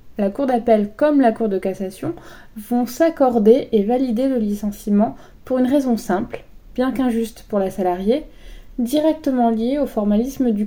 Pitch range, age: 205-255 Hz, 20-39